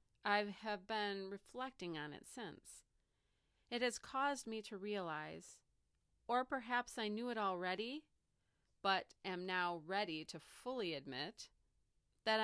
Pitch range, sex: 175-220 Hz, female